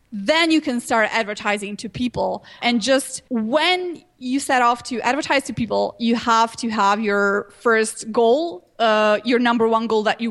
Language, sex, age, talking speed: English, female, 20-39, 180 wpm